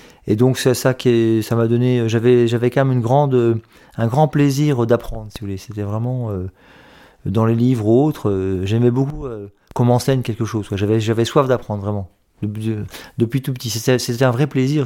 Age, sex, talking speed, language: 40-59, male, 200 wpm, French